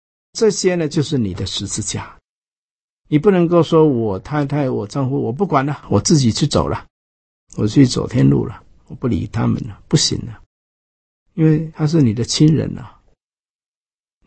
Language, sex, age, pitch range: Chinese, male, 50-69, 105-160 Hz